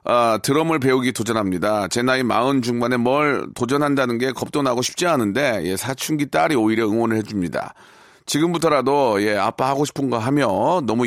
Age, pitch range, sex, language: 40-59, 105-135 Hz, male, Korean